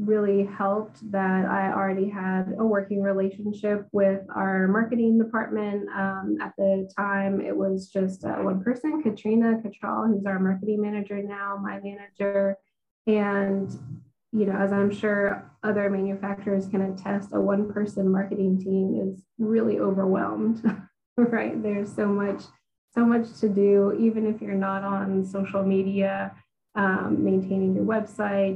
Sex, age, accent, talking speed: female, 20-39, American, 145 wpm